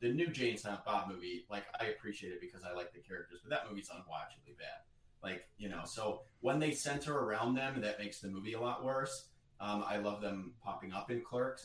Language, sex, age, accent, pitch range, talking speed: English, male, 30-49, American, 100-125 Hz, 225 wpm